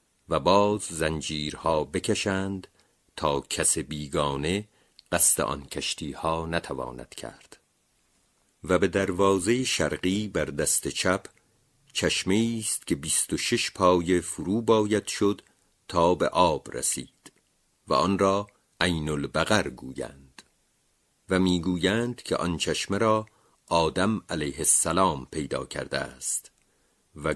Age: 50-69